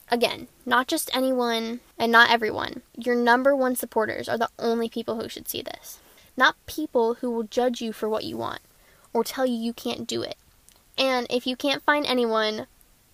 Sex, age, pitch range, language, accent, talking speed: female, 10-29, 230-255 Hz, English, American, 190 wpm